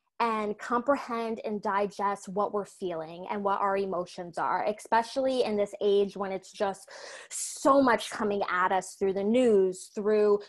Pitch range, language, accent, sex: 195-250 Hz, English, American, female